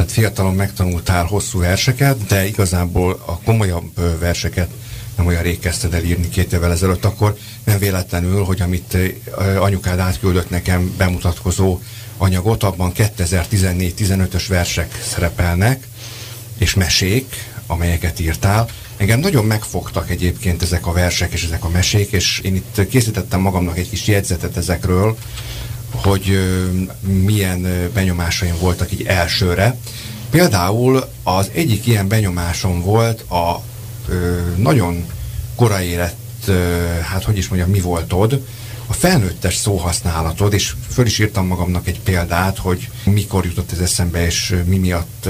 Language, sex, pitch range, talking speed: Hungarian, male, 90-115 Hz, 130 wpm